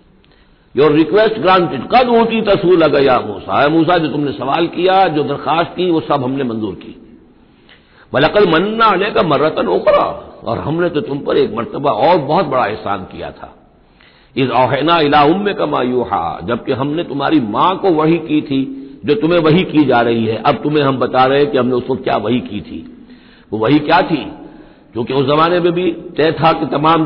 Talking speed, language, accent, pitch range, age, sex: 190 wpm, Hindi, native, 130-175 Hz, 60-79, male